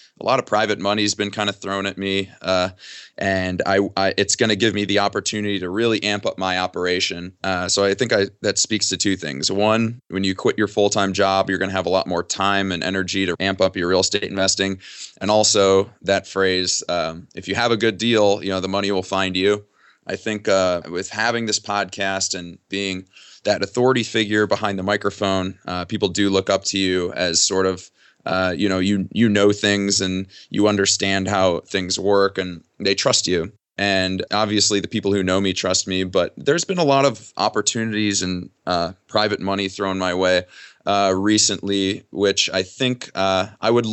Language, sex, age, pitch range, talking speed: English, male, 20-39, 95-105 Hz, 210 wpm